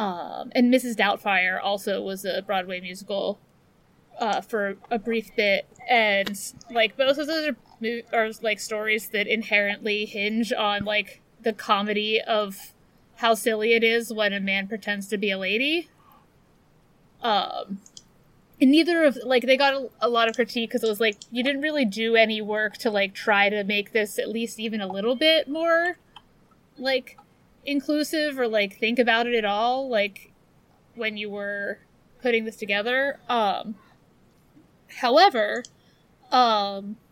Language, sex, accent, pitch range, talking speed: English, female, American, 210-245 Hz, 155 wpm